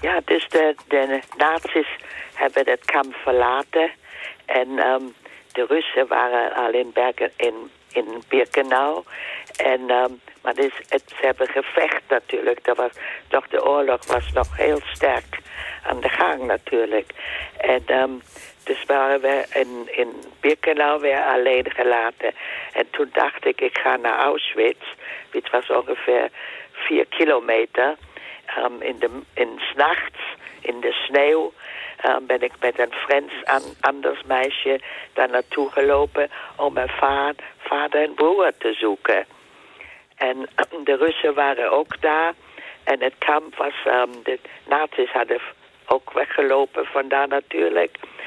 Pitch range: 130-155 Hz